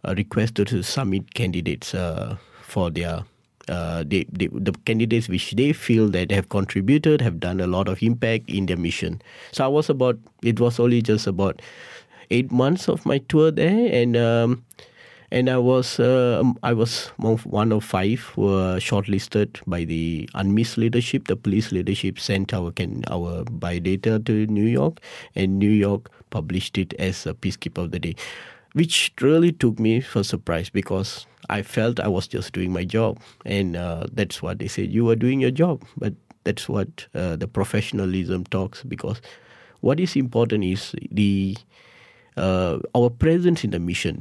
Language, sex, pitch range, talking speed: English, male, 95-120 Hz, 175 wpm